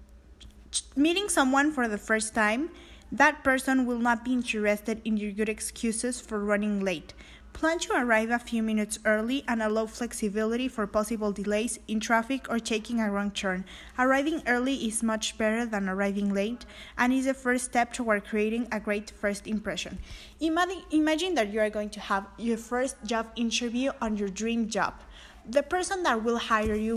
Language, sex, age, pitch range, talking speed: English, female, 20-39, 210-250 Hz, 175 wpm